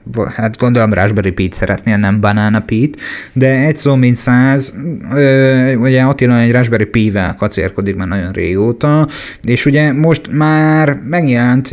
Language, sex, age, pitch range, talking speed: Hungarian, male, 30-49, 110-130 Hz, 140 wpm